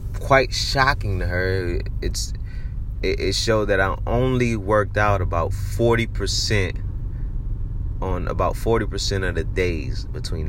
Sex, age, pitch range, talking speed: male, 30-49, 90-110 Hz, 120 wpm